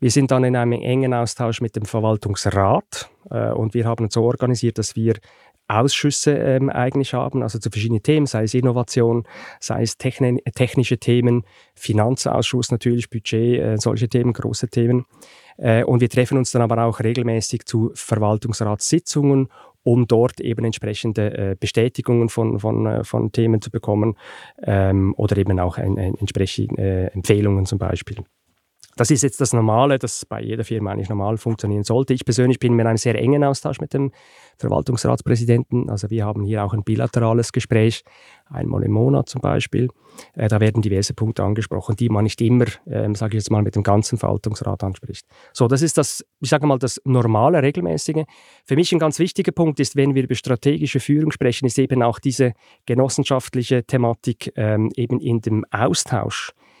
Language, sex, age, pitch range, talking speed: German, male, 30-49, 110-130 Hz, 175 wpm